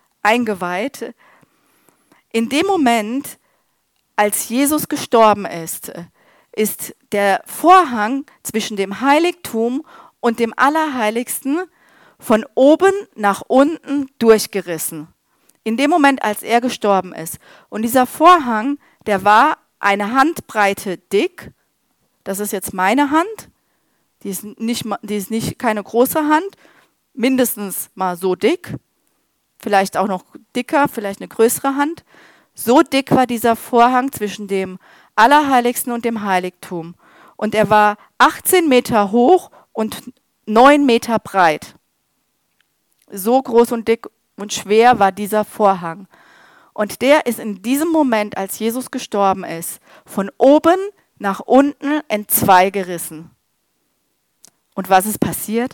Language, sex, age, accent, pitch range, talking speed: German, female, 40-59, German, 200-275 Hz, 115 wpm